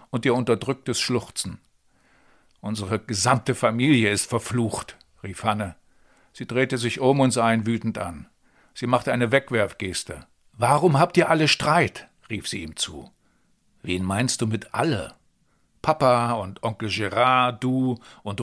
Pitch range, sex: 110-140 Hz, male